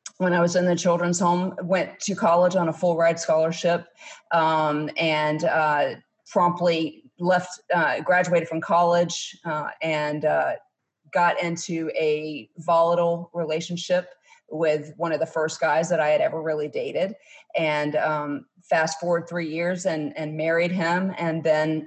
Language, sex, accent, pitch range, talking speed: English, female, American, 155-175 Hz, 155 wpm